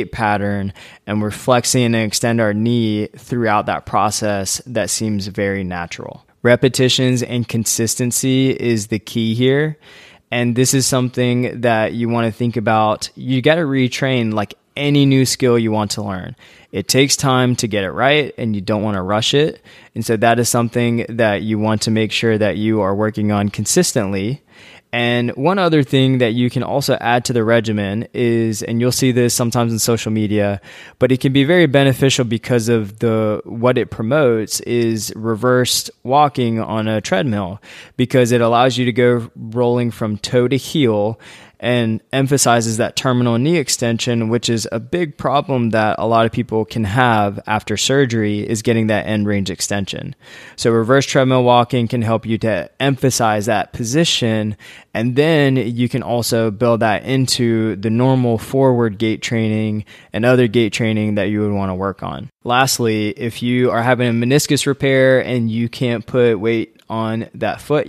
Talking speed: 180 wpm